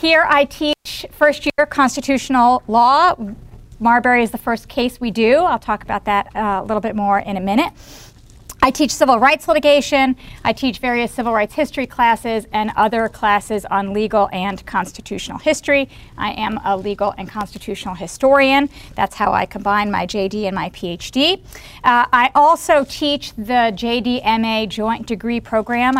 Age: 40-59